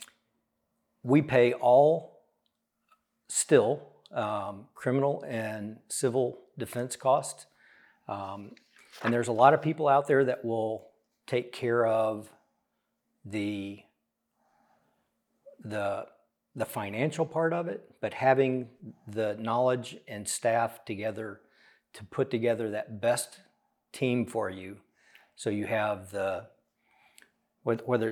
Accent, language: American, English